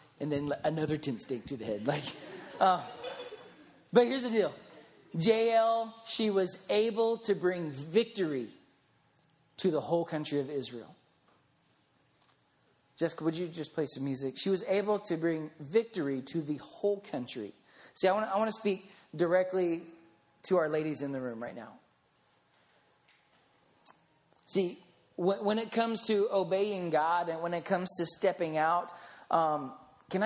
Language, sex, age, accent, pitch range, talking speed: English, male, 30-49, American, 155-205 Hz, 150 wpm